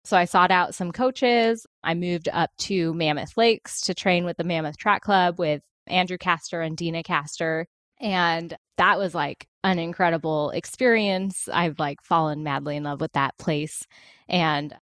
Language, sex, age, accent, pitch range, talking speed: English, female, 10-29, American, 165-200 Hz, 170 wpm